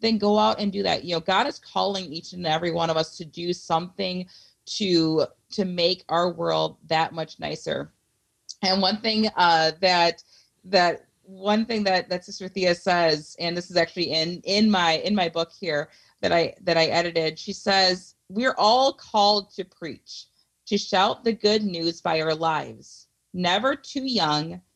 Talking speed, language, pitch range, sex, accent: 180 wpm, English, 165-200 Hz, female, American